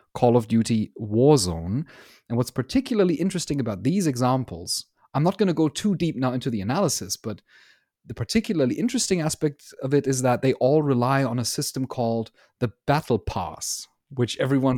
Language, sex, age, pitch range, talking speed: English, male, 30-49, 120-160 Hz, 175 wpm